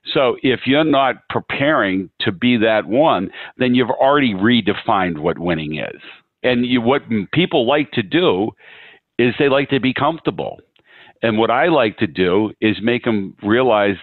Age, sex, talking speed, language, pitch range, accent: 50-69, male, 165 wpm, English, 105-135 Hz, American